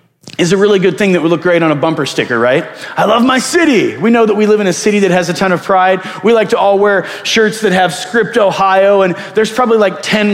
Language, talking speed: English, 275 wpm